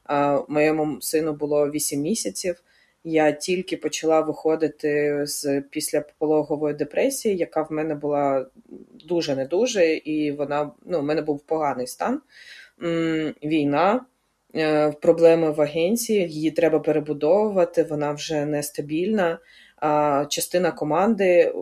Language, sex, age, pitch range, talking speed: Ukrainian, female, 20-39, 150-175 Hz, 105 wpm